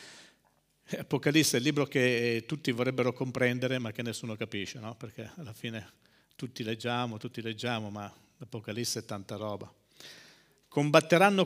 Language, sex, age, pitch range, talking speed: Italian, male, 50-69, 125-180 Hz, 135 wpm